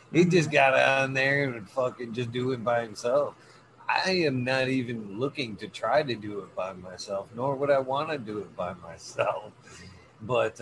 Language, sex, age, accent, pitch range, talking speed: English, male, 50-69, American, 105-135 Hz, 190 wpm